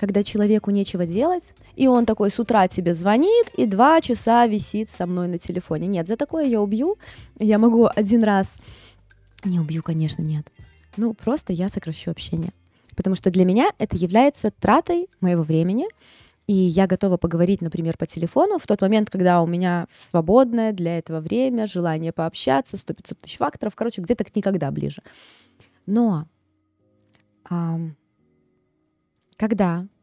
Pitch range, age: 170-225 Hz, 20-39